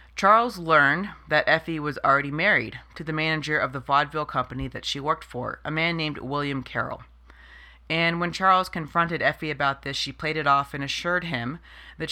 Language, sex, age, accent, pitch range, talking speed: English, female, 30-49, American, 140-175 Hz, 190 wpm